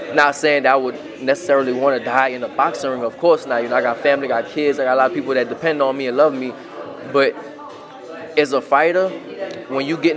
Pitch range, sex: 130-155 Hz, male